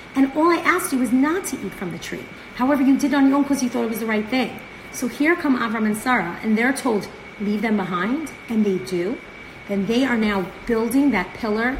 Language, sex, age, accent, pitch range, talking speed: English, female, 40-59, American, 200-270 Hz, 250 wpm